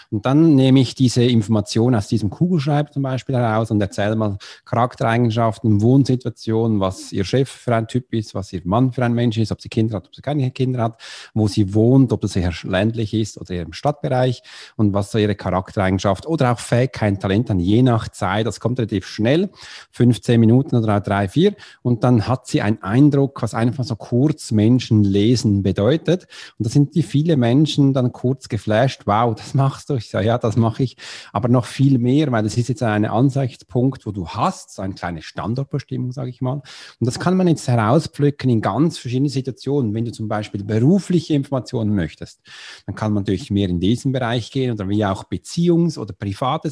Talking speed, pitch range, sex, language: 205 wpm, 105-135 Hz, male, German